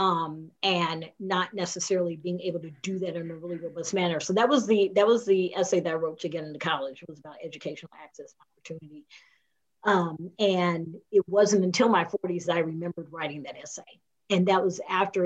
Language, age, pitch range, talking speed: English, 40-59, 165-195 Hz, 200 wpm